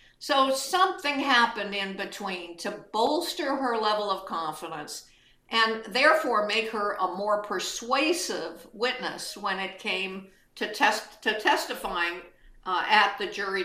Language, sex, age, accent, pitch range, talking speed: English, female, 50-69, American, 190-240 Hz, 130 wpm